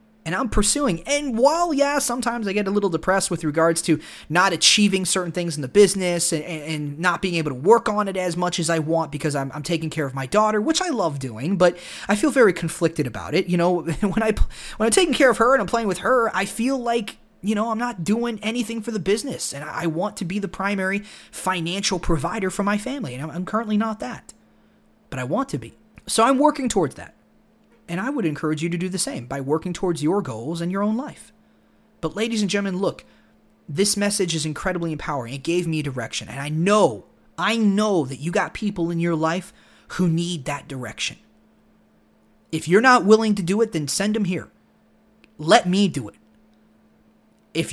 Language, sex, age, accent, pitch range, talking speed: English, male, 30-49, American, 165-220 Hz, 215 wpm